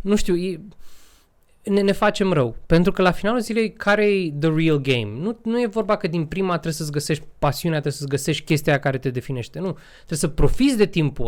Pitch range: 155-210 Hz